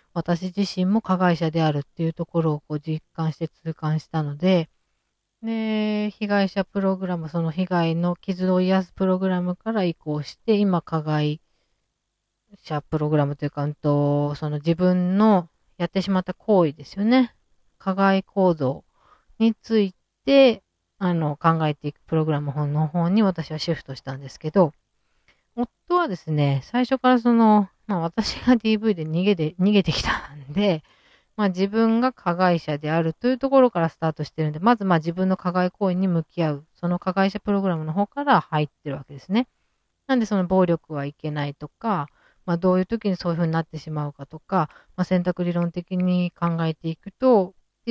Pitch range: 155-200 Hz